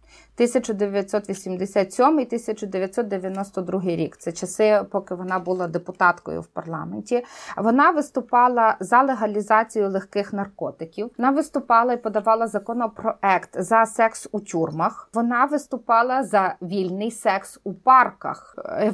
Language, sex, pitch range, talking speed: Ukrainian, female, 195-230 Hz, 110 wpm